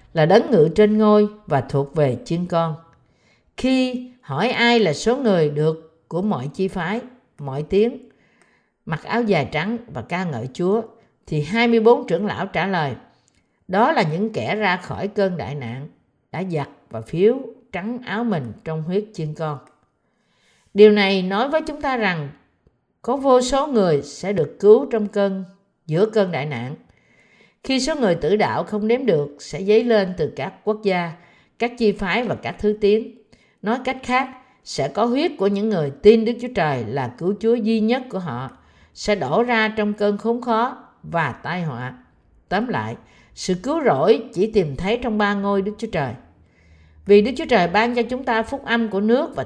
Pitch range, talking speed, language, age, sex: 160-230 Hz, 190 wpm, Vietnamese, 50-69, female